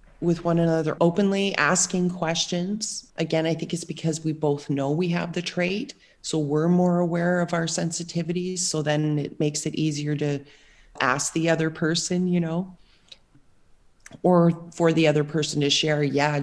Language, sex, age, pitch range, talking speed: English, female, 30-49, 145-170 Hz, 170 wpm